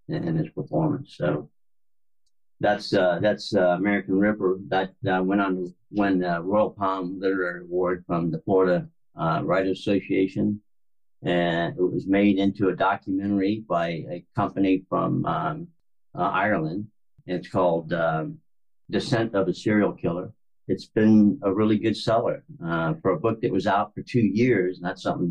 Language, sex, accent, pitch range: English, male, American, 90-105 Hz